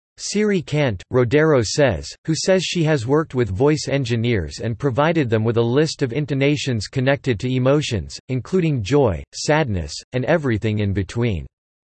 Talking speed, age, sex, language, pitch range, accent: 150 wpm, 40-59, male, English, 115-155 Hz, American